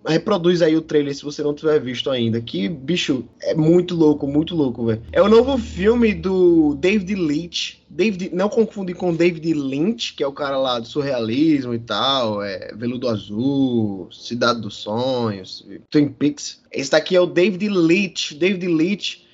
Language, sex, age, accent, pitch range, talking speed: Portuguese, male, 20-39, Brazilian, 145-185 Hz, 175 wpm